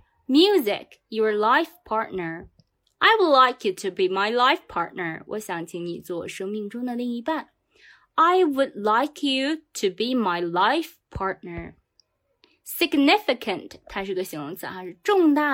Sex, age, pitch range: female, 20-39, 200-315 Hz